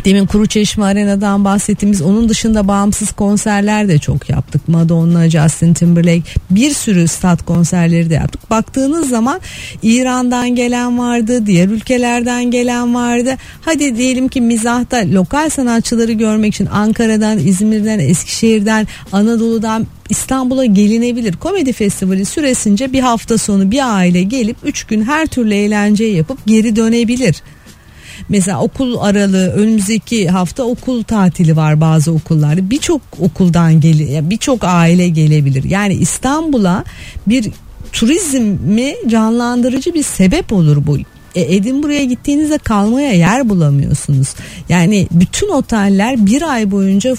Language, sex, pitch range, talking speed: Turkish, female, 180-240 Hz, 125 wpm